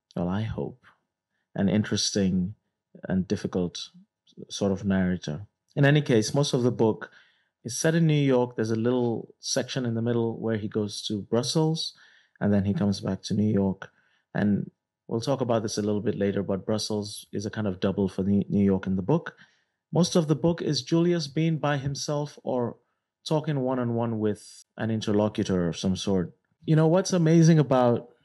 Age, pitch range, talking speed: 30-49, 100-125 Hz, 185 wpm